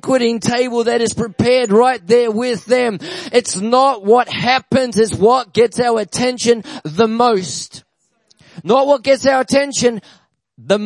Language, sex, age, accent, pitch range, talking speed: English, male, 30-49, Australian, 210-255 Hz, 145 wpm